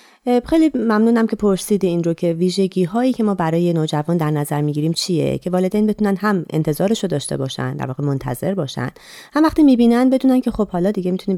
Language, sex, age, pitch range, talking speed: Persian, female, 30-49, 155-225 Hz, 190 wpm